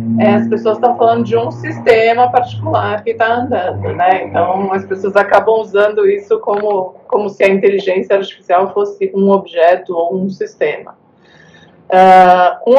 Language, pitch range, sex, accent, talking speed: Portuguese, 185-225 Hz, female, Brazilian, 145 wpm